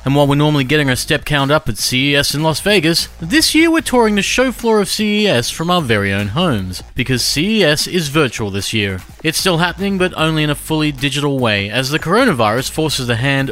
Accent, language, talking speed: Australian, English, 220 wpm